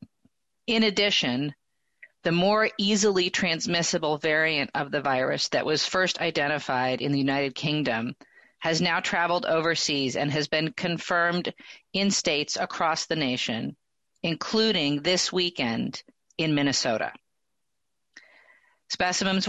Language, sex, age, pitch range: English, female, 40-59, 145-180 Hz